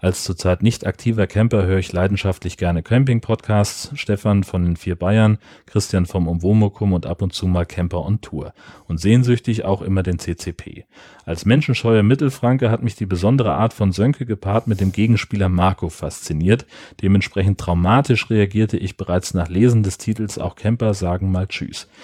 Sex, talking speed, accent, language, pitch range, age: male, 170 wpm, German, German, 90-115 Hz, 40-59